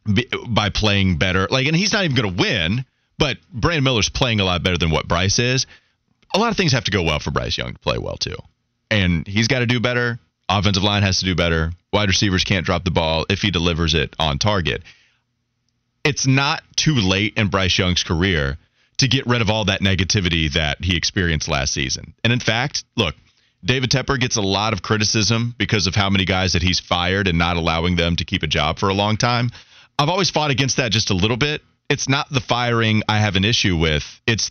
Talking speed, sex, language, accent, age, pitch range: 230 wpm, male, English, American, 30-49, 95-130 Hz